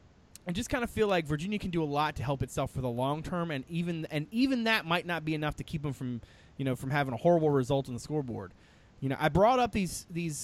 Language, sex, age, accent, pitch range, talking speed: English, male, 30-49, American, 130-180 Hz, 275 wpm